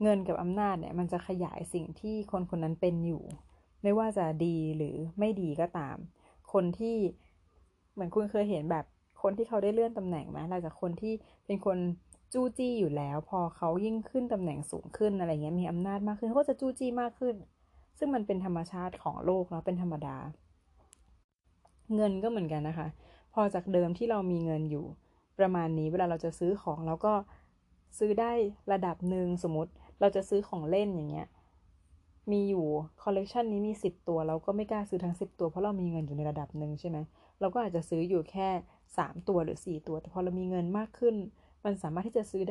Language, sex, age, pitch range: Thai, female, 30-49, 160-205 Hz